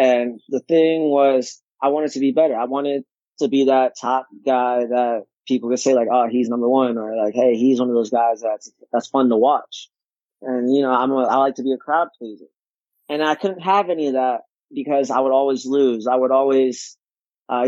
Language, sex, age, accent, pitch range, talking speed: English, male, 20-39, American, 125-140 Hz, 225 wpm